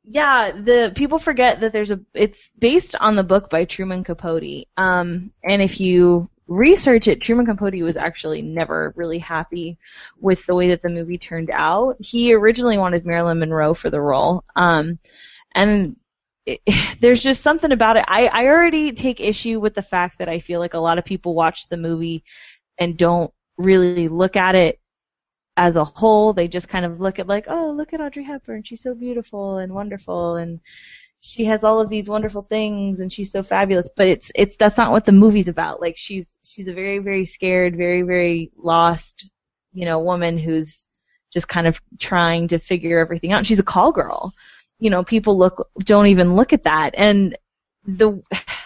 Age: 20-39